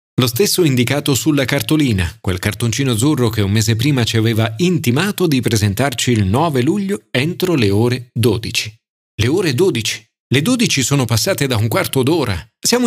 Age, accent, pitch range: 40-59, native, 110-160 Hz